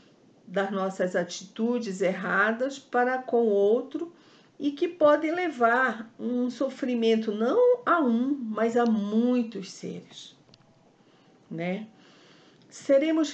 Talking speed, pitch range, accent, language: 105 wpm, 180-235 Hz, Brazilian, Portuguese